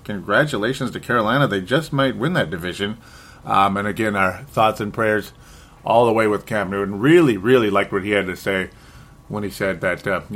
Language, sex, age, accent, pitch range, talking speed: English, male, 30-49, American, 100-125 Hz, 205 wpm